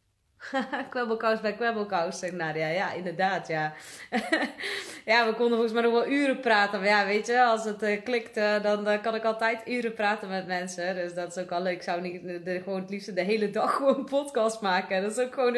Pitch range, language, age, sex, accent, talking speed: 175-215 Hz, Dutch, 20-39, female, Dutch, 225 wpm